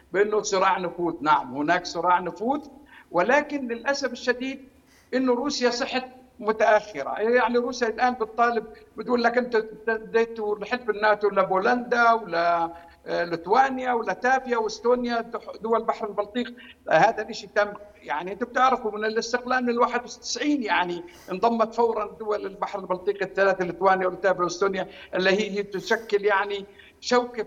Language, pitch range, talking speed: Arabic, 190-230 Hz, 125 wpm